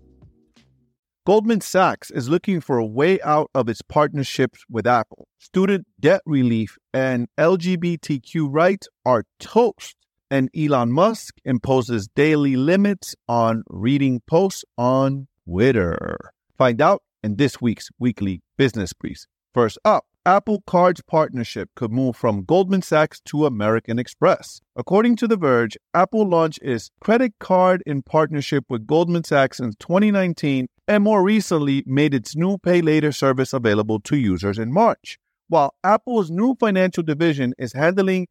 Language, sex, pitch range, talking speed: English, male, 125-175 Hz, 140 wpm